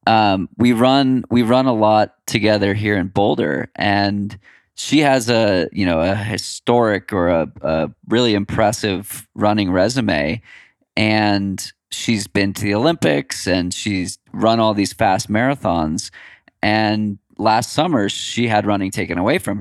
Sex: male